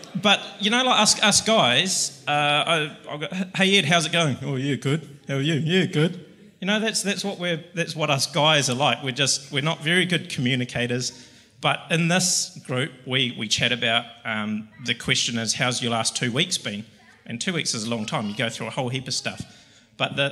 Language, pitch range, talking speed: English, 120-160 Hz, 230 wpm